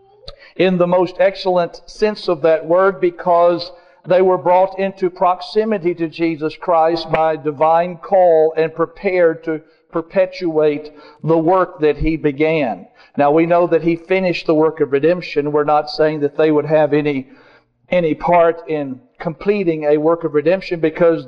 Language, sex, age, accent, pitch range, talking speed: English, male, 50-69, American, 155-180 Hz, 160 wpm